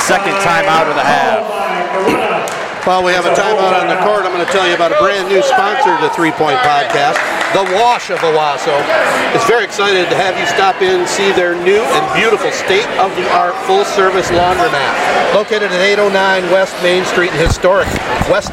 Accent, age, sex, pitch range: American, 50-69, male, 190-230 Hz